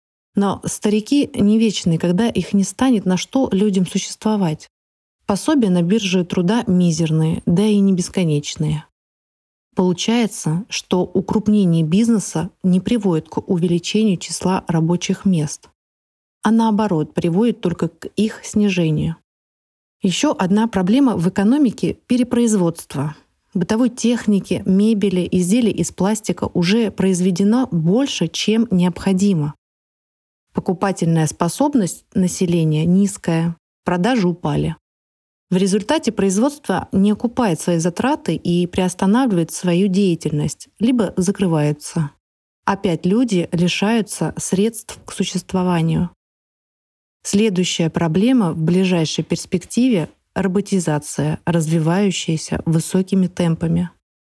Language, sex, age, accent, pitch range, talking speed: Russian, female, 30-49, native, 170-210 Hz, 100 wpm